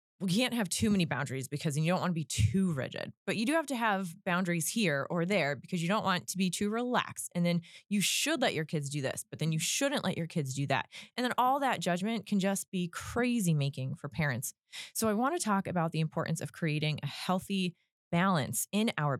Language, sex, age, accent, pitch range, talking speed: English, female, 20-39, American, 150-205 Hz, 240 wpm